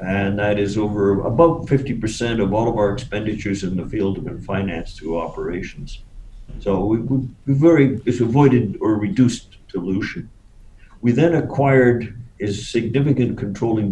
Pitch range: 95-125 Hz